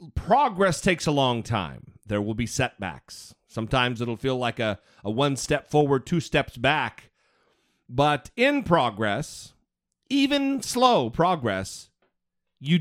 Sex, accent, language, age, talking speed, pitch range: male, American, English, 40-59, 130 wpm, 120-190 Hz